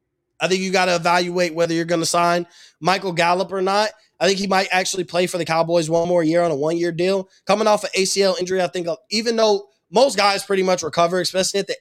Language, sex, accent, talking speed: English, male, American, 245 wpm